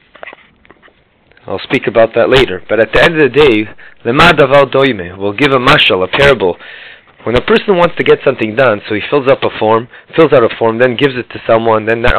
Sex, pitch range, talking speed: male, 120-165 Hz, 225 wpm